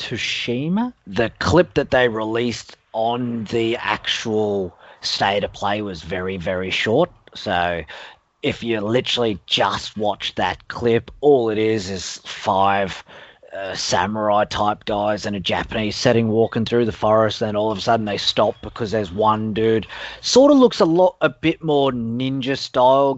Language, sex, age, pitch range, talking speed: English, male, 30-49, 105-130 Hz, 155 wpm